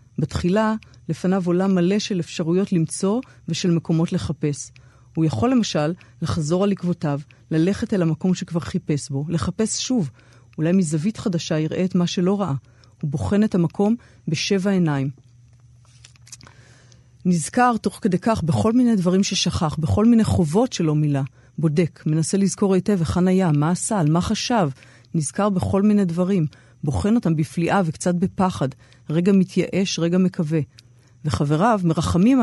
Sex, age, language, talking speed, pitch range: female, 40-59, Hebrew, 140 wpm, 140-190 Hz